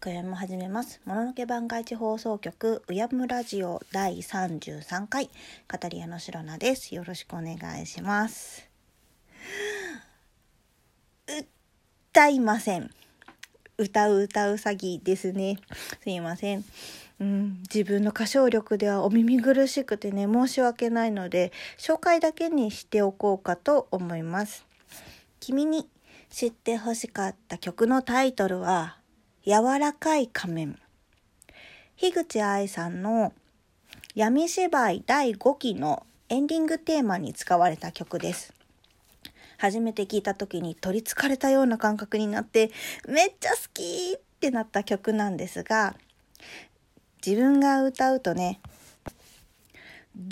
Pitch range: 190-255 Hz